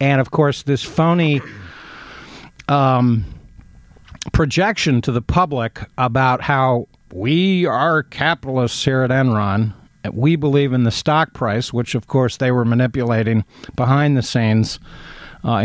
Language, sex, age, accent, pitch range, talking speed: English, male, 50-69, American, 115-140 Hz, 135 wpm